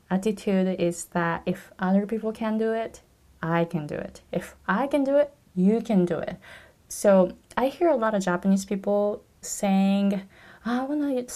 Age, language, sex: 20-39, Japanese, female